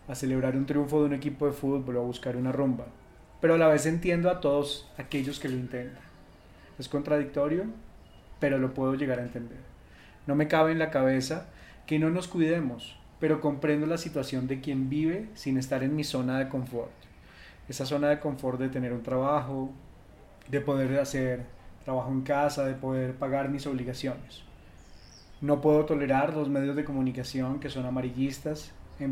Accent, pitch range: Colombian, 130-150 Hz